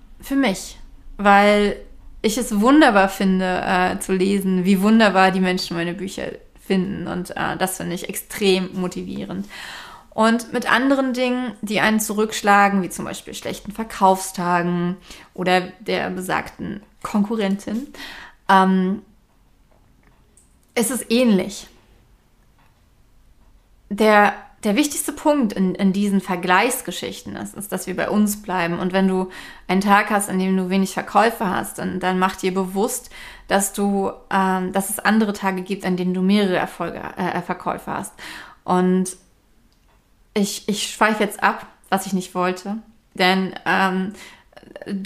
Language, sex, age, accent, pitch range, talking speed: German, female, 30-49, German, 185-210 Hz, 140 wpm